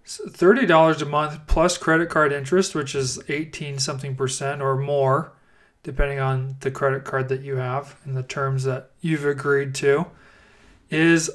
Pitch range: 135-175 Hz